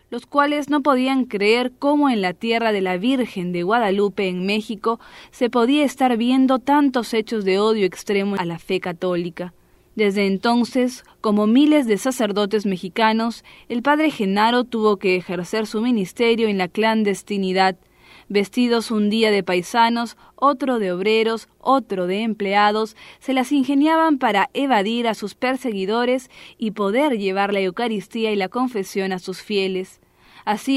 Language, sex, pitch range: English, female, 195-245 Hz